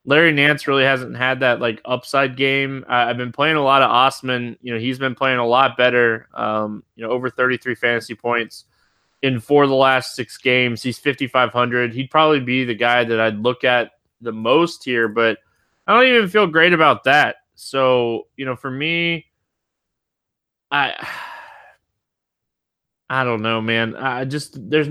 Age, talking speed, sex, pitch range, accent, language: 20-39, 175 wpm, male, 115-135 Hz, American, English